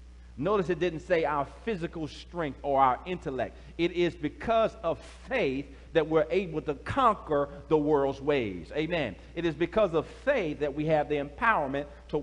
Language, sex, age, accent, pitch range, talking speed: English, male, 40-59, American, 140-180 Hz, 170 wpm